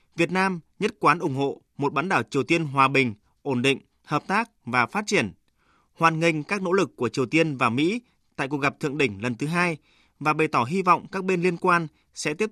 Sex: male